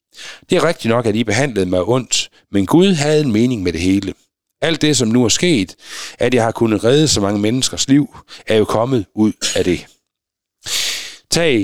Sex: male